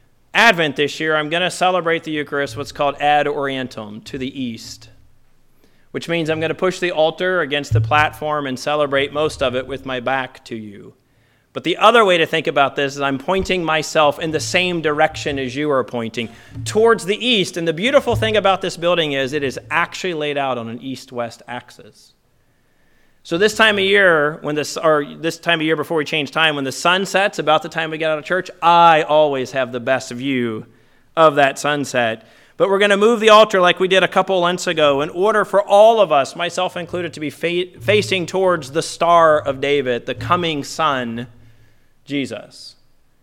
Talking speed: 205 wpm